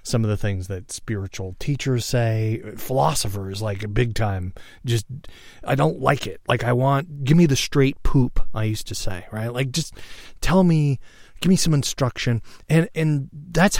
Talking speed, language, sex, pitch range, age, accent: 185 wpm, English, male, 100-120 Hz, 30-49, American